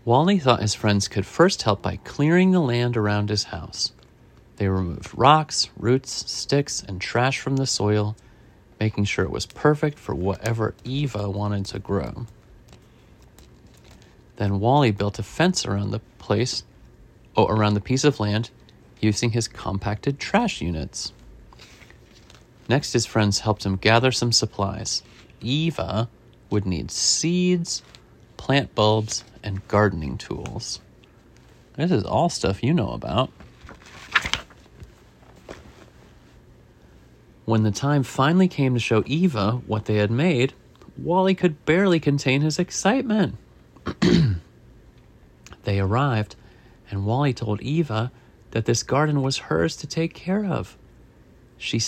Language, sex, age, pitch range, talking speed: English, male, 30-49, 105-140 Hz, 130 wpm